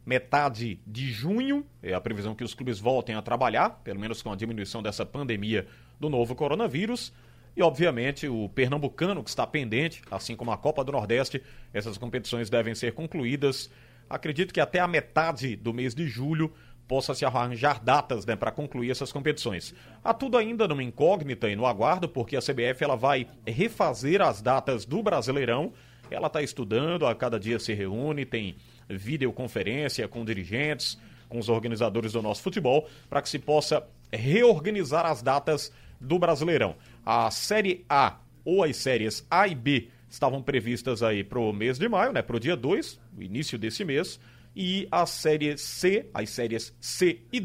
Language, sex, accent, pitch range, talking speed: Portuguese, male, Brazilian, 115-155 Hz, 170 wpm